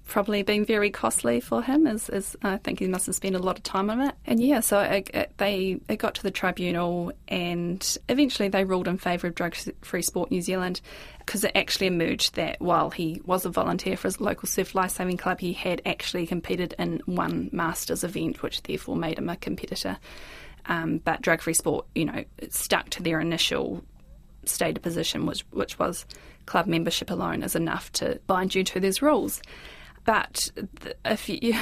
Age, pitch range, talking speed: 20-39, 175-220 Hz, 195 wpm